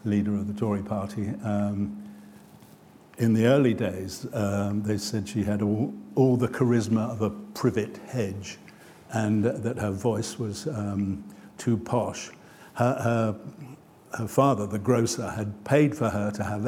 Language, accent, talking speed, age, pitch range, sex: English, British, 155 wpm, 60-79, 105-115 Hz, male